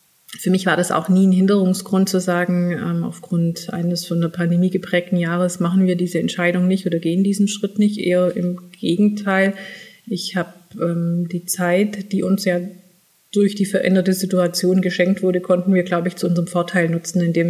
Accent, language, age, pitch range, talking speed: German, German, 30-49, 175-190 Hz, 180 wpm